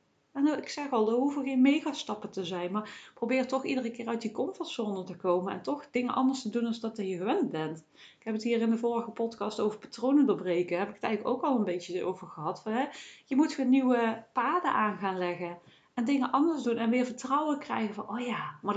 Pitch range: 200-255 Hz